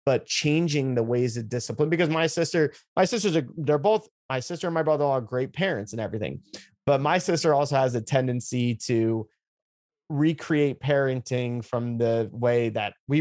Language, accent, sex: English, American, male